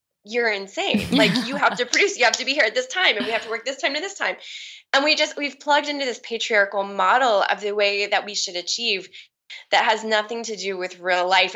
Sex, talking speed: female, 255 wpm